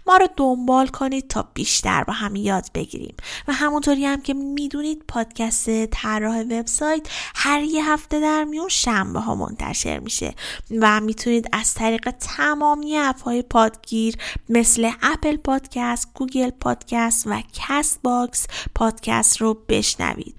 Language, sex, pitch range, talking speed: Persian, female, 220-280 Hz, 145 wpm